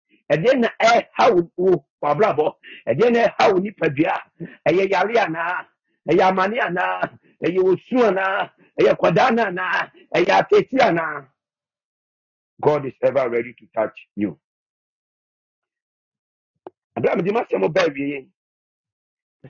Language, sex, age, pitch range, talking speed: English, male, 50-69, 165-210 Hz, 45 wpm